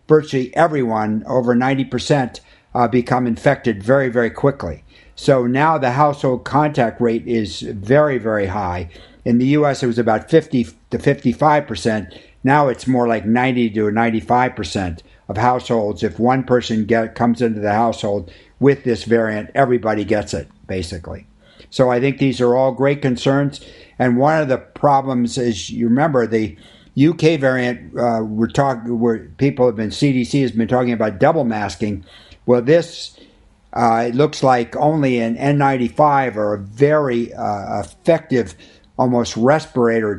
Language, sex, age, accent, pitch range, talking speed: English, male, 60-79, American, 110-135 Hz, 160 wpm